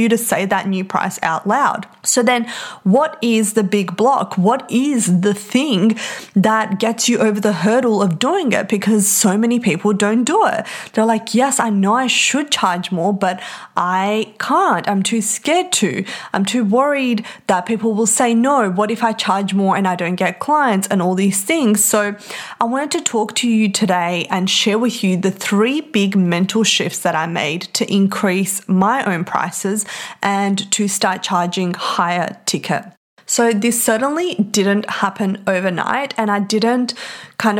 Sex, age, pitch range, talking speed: female, 20-39, 185-225 Hz, 180 wpm